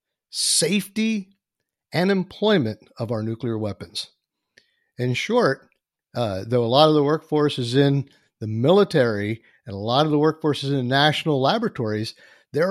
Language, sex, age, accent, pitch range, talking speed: English, male, 50-69, American, 120-160 Hz, 145 wpm